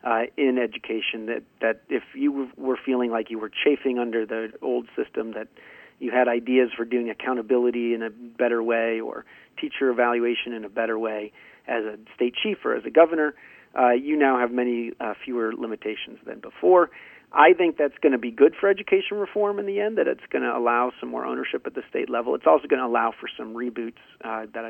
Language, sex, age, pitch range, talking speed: English, male, 40-59, 115-155 Hz, 215 wpm